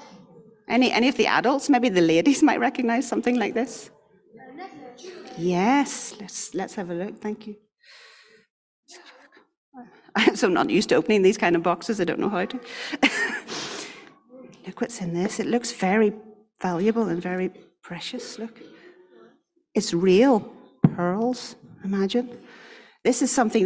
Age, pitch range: 40-59, 190-270 Hz